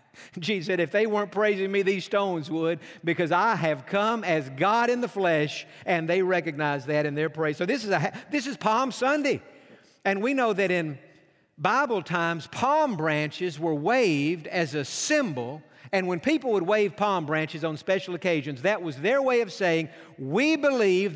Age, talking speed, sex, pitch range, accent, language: 50-69, 180 wpm, male, 155-205 Hz, American, English